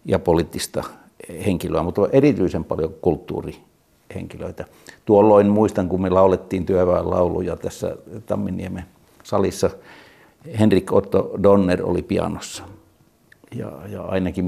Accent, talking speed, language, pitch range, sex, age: native, 100 wpm, Finnish, 95-110 Hz, male, 60-79